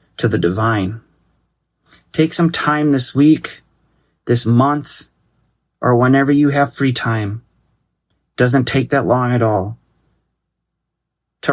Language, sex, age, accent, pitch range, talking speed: English, male, 30-49, American, 110-130 Hz, 120 wpm